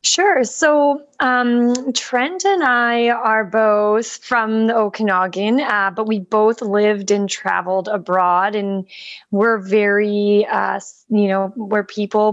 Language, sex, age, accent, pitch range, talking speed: English, female, 20-39, American, 200-245 Hz, 130 wpm